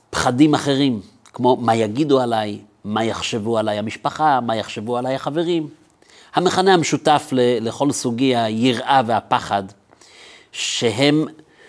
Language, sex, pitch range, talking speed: Hebrew, male, 110-135 Hz, 115 wpm